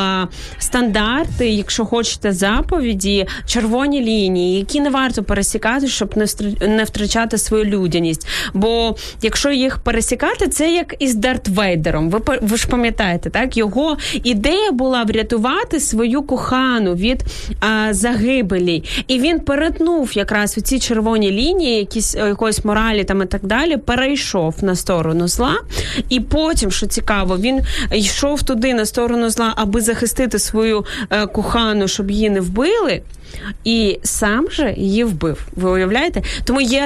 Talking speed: 130 wpm